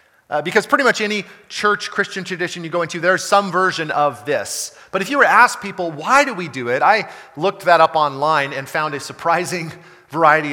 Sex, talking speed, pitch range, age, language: male, 210 wpm, 155-195 Hz, 40-59, English